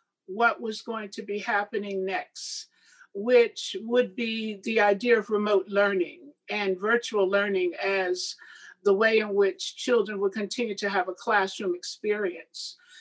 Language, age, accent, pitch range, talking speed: English, 50-69, American, 205-260 Hz, 145 wpm